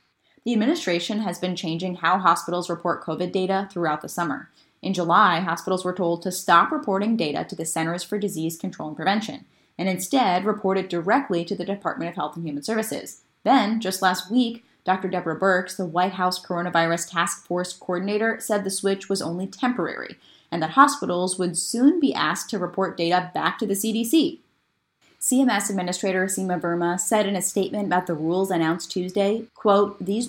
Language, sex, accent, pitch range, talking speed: English, female, American, 170-215 Hz, 180 wpm